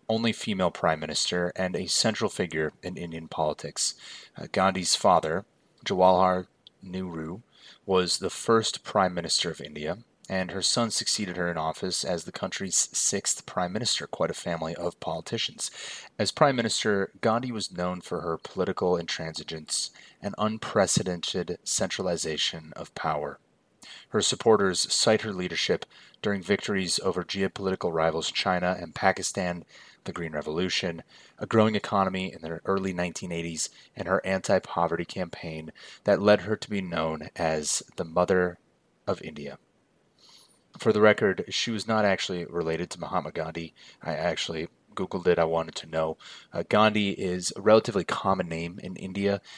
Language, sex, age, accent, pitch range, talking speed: English, male, 30-49, American, 85-100 Hz, 145 wpm